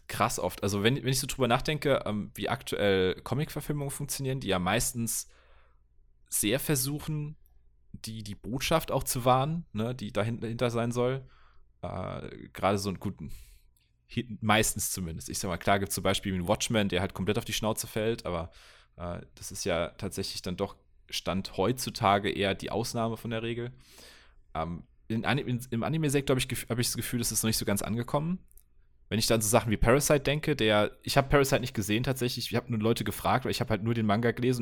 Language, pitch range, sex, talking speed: German, 100-130 Hz, male, 210 wpm